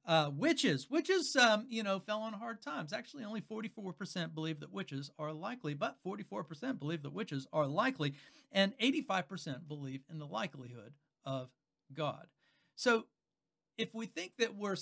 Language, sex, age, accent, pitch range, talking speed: English, male, 50-69, American, 150-210 Hz, 160 wpm